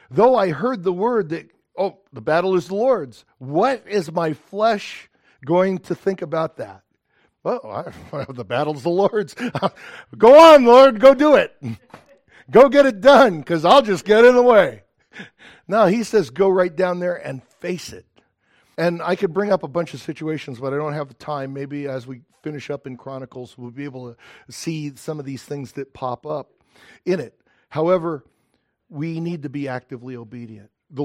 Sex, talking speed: male, 185 wpm